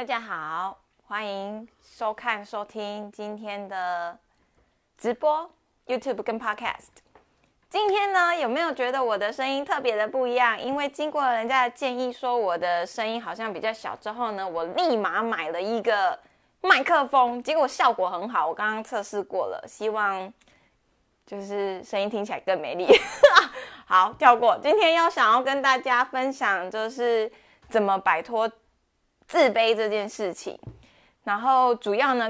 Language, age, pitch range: Chinese, 20-39, 205-265 Hz